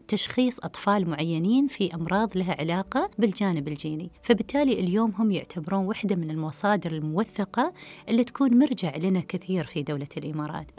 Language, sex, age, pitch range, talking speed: Arabic, female, 30-49, 170-230 Hz, 140 wpm